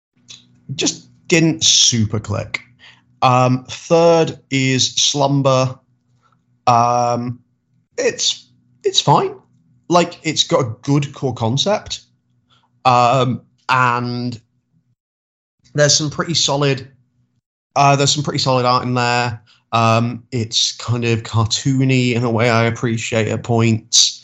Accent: British